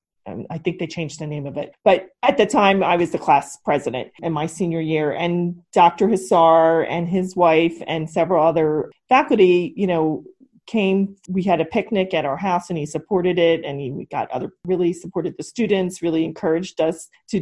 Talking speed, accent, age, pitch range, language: 195 wpm, American, 40-59, 160-200 Hz, English